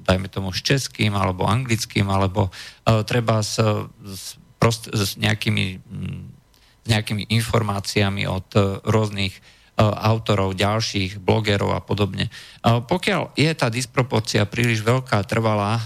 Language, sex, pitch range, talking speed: Slovak, male, 100-120 Hz, 130 wpm